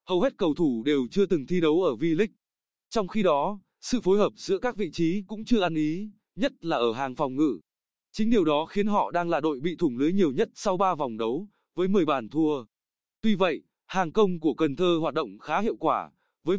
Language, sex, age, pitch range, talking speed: Vietnamese, male, 20-39, 160-210 Hz, 235 wpm